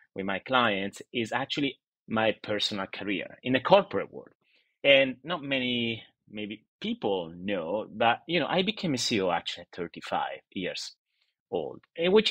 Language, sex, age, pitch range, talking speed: English, male, 30-49, 105-155 Hz, 150 wpm